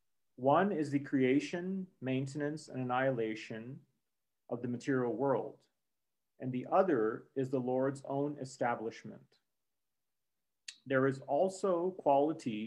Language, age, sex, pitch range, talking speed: English, 40-59, male, 125-160 Hz, 110 wpm